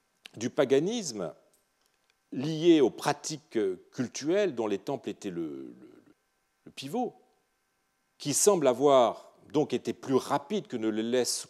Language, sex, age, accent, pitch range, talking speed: French, male, 40-59, French, 110-180 Hz, 130 wpm